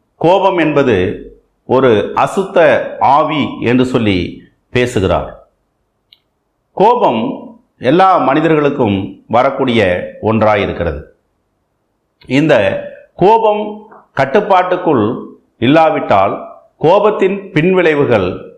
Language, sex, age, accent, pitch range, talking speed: Tamil, male, 50-69, native, 110-175 Hz, 60 wpm